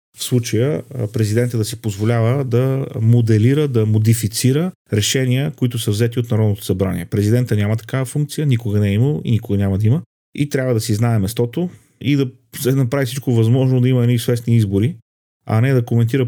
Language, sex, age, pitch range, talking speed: Bulgarian, male, 40-59, 110-130 Hz, 185 wpm